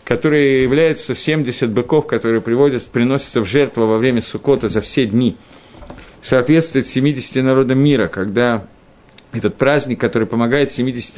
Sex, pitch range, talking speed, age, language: male, 115-150 Hz, 135 wpm, 50-69, Russian